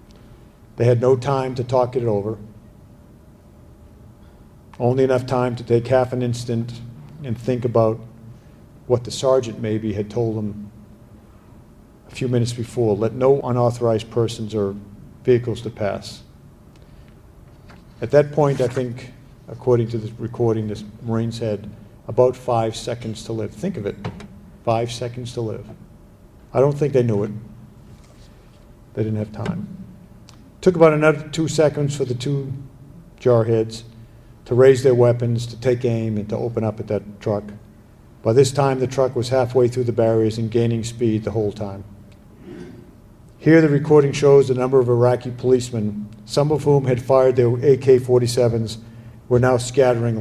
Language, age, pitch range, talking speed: English, 50-69, 110-125 Hz, 155 wpm